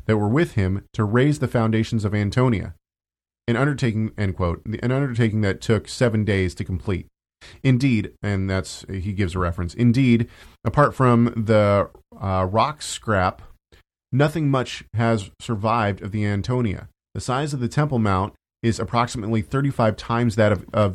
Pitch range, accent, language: 100-125 Hz, American, English